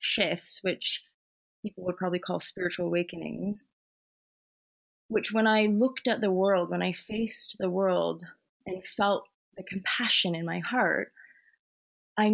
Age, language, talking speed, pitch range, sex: 20-39, English, 135 wpm, 185-225 Hz, female